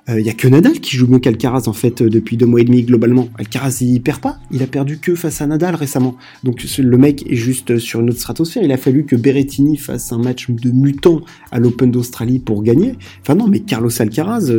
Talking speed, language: 255 wpm, French